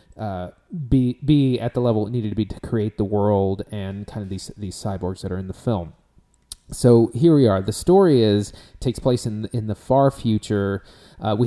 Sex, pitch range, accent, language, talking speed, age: male, 100-130 Hz, American, English, 215 wpm, 30-49